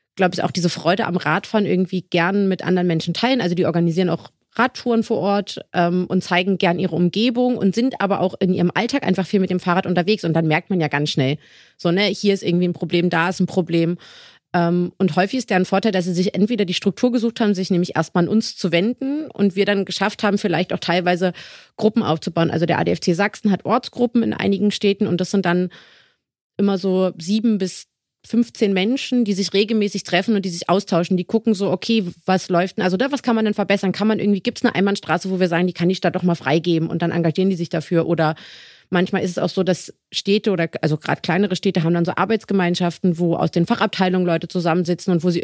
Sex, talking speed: female, 235 wpm